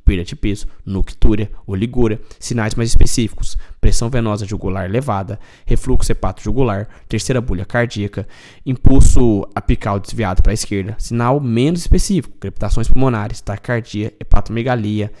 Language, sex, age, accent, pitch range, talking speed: Portuguese, male, 10-29, Brazilian, 105-140 Hz, 120 wpm